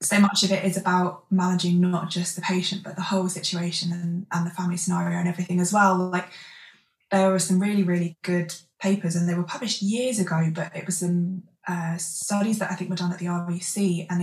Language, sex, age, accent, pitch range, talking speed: English, female, 20-39, British, 170-185 Hz, 225 wpm